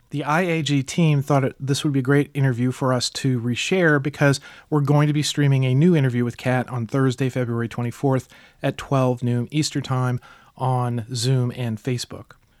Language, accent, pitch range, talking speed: English, American, 125-145 Hz, 185 wpm